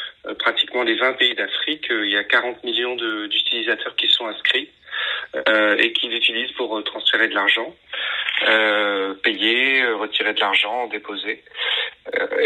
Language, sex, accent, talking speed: French, male, French, 135 wpm